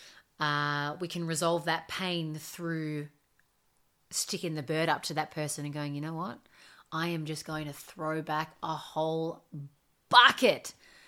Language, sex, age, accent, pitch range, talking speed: English, female, 30-49, Australian, 155-175 Hz, 155 wpm